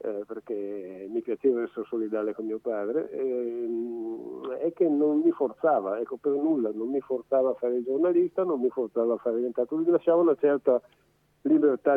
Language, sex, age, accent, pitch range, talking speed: Italian, male, 50-69, native, 110-140 Hz, 175 wpm